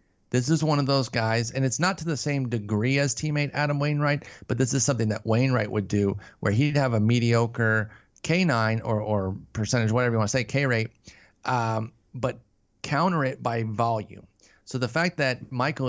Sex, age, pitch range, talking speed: male, 30-49, 115-145 Hz, 195 wpm